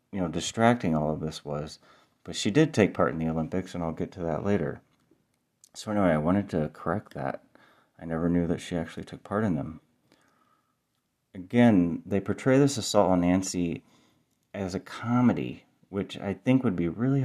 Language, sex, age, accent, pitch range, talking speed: English, male, 30-49, American, 85-105 Hz, 190 wpm